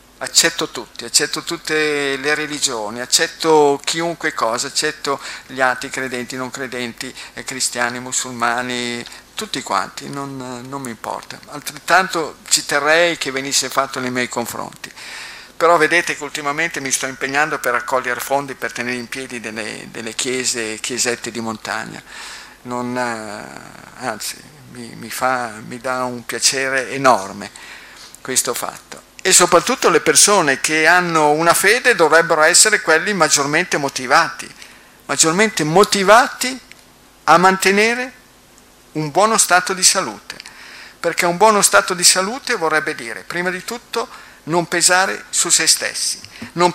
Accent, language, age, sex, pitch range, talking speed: native, Italian, 50-69, male, 125-175 Hz, 130 wpm